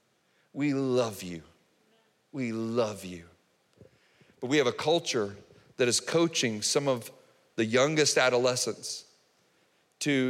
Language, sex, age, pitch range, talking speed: English, male, 40-59, 120-165 Hz, 115 wpm